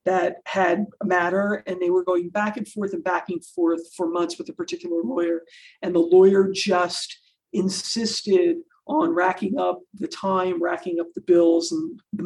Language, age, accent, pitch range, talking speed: English, 50-69, American, 175-225 Hz, 180 wpm